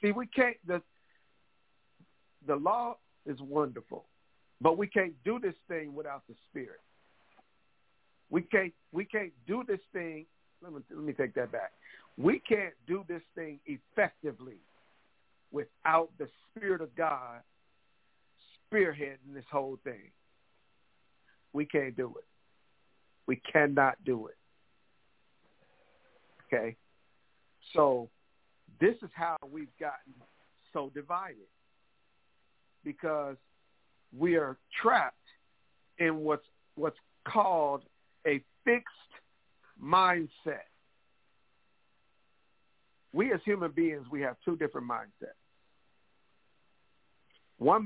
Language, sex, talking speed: English, male, 105 wpm